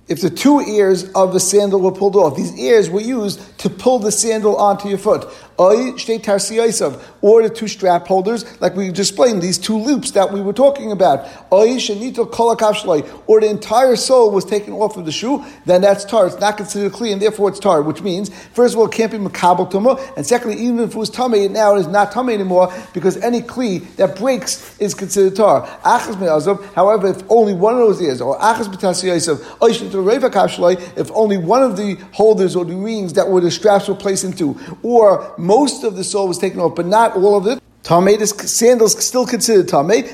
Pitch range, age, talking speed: 190-230 Hz, 50-69, 200 wpm